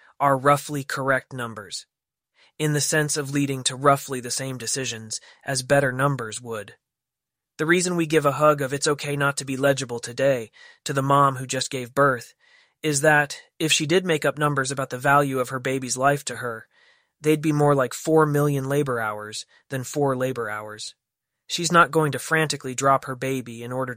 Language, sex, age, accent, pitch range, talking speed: English, male, 20-39, American, 125-145 Hz, 195 wpm